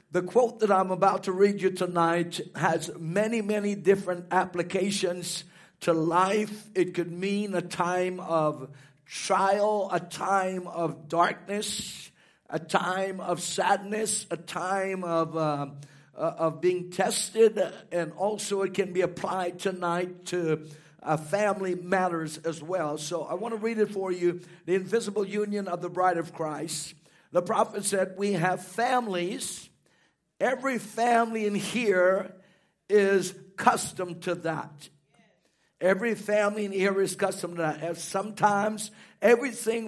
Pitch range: 175-215 Hz